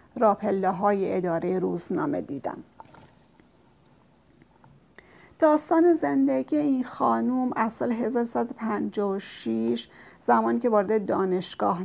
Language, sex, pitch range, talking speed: Persian, female, 185-225 Hz, 75 wpm